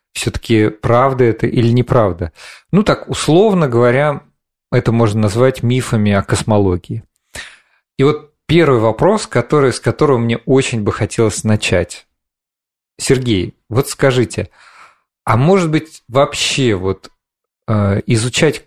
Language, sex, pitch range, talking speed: Russian, male, 110-135 Hz, 115 wpm